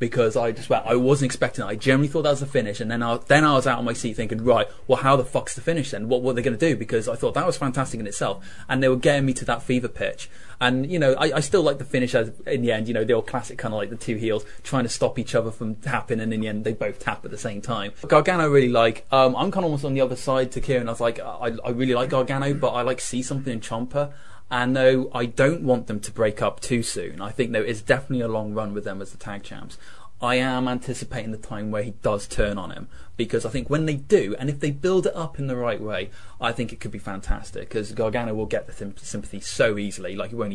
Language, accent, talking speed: English, British, 290 wpm